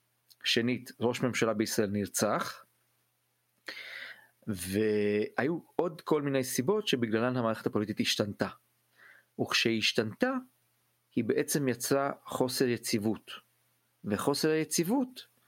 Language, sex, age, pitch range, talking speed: Hebrew, male, 40-59, 110-145 Hz, 90 wpm